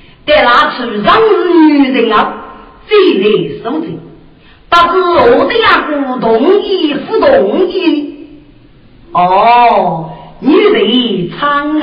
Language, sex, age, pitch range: Chinese, female, 50-69, 225-365 Hz